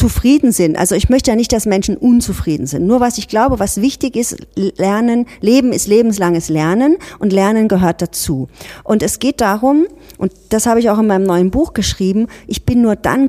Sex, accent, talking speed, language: female, German, 205 wpm, German